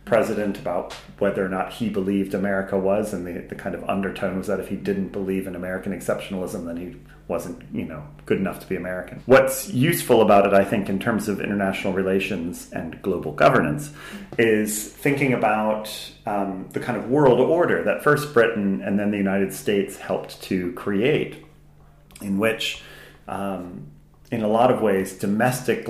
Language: English